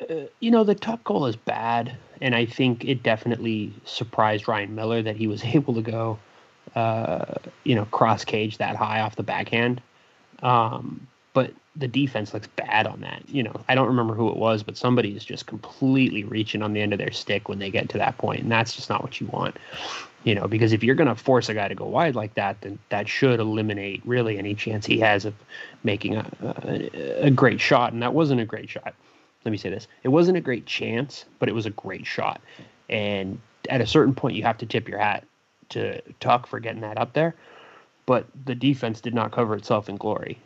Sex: male